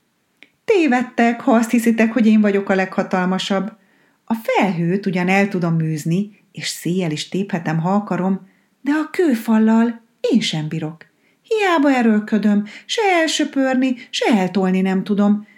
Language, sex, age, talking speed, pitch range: Hungarian, female, 30-49, 135 wpm, 175-235 Hz